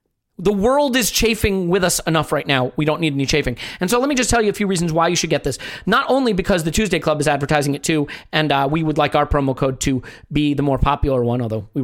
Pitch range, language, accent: 145-200 Hz, English, American